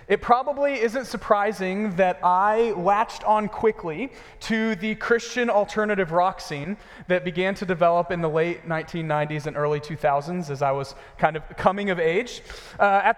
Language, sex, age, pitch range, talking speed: English, male, 30-49, 160-215 Hz, 165 wpm